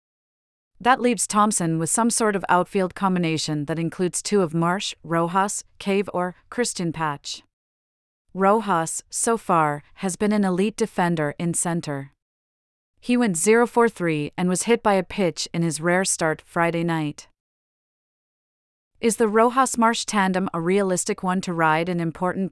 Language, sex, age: English, female, 40-59